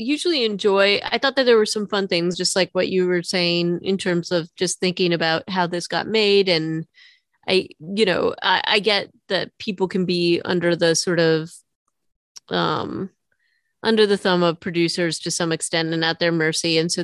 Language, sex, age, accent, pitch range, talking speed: English, female, 30-49, American, 165-195 Hz, 195 wpm